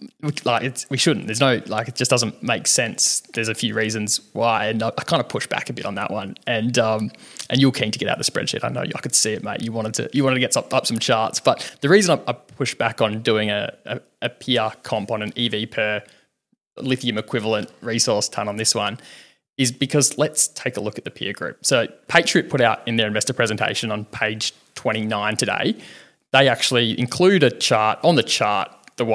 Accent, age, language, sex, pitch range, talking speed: Australian, 20-39, English, male, 110-130 Hz, 225 wpm